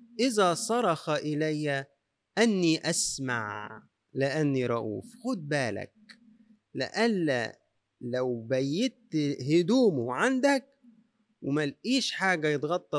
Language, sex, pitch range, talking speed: Arabic, male, 120-160 Hz, 80 wpm